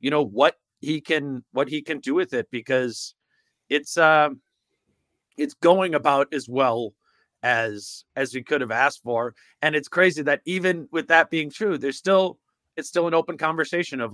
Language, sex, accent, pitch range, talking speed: English, male, American, 125-155 Hz, 180 wpm